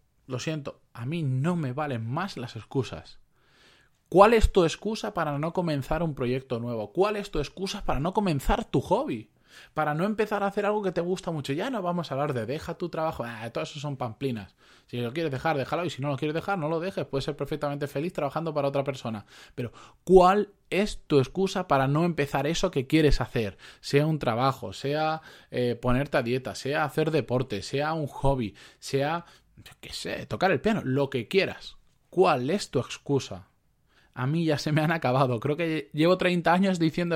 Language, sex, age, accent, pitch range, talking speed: Spanish, male, 20-39, Spanish, 130-170 Hz, 205 wpm